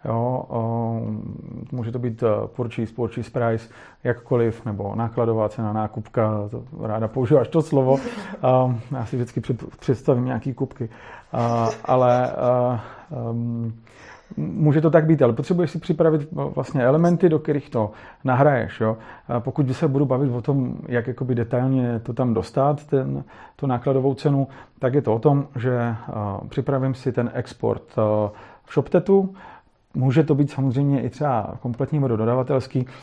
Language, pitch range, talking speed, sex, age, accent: Czech, 115-145 Hz, 130 wpm, male, 40-59, native